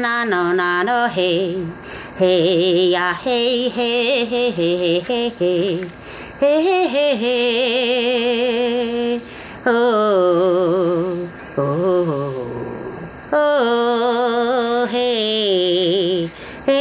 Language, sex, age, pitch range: Russian, female, 30-49, 180-240 Hz